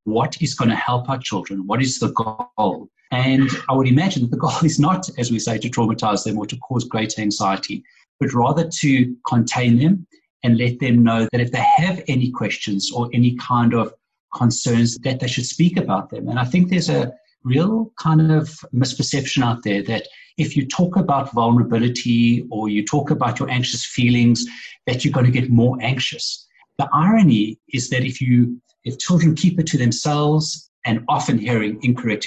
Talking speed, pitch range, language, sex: 195 wpm, 115-150 Hz, English, male